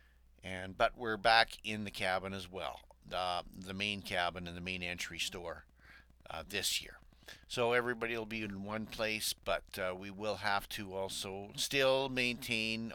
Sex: male